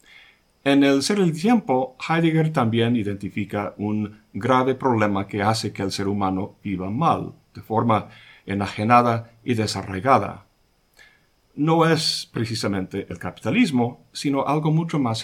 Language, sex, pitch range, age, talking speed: Spanish, male, 105-140 Hz, 50-69, 130 wpm